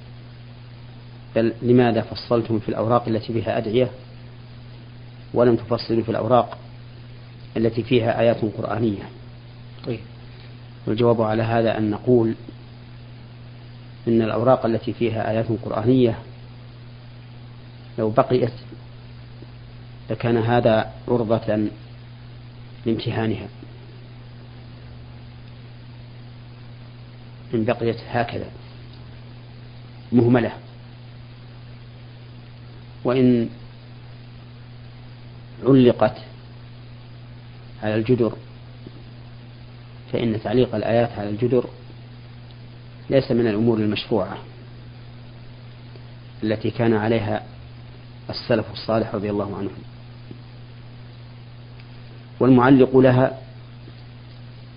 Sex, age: male, 40-59